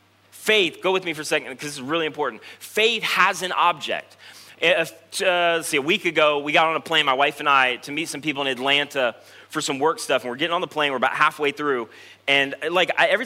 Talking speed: 245 wpm